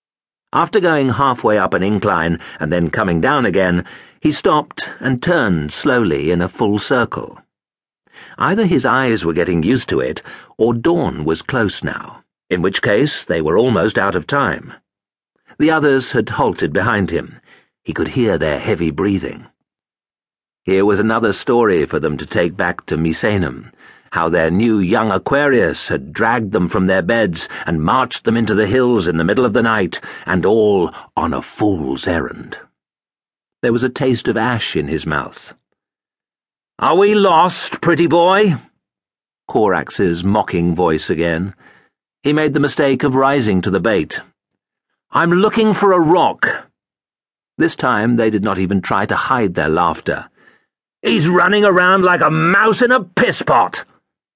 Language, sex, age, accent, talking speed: English, male, 50-69, British, 160 wpm